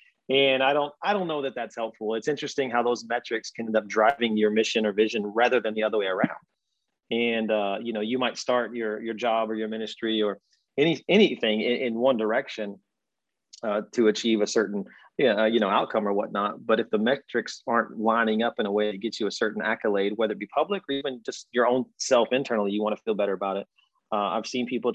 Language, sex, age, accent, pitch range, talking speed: English, male, 30-49, American, 105-130 Hz, 230 wpm